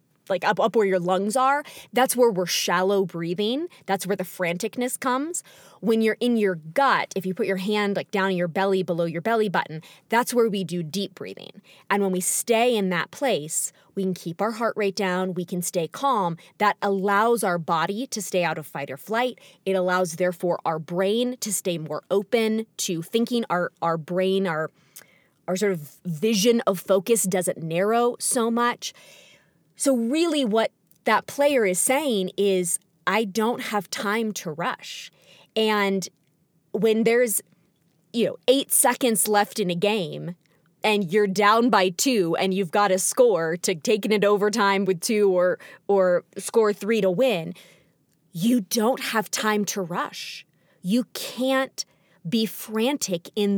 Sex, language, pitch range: female, English, 180-225 Hz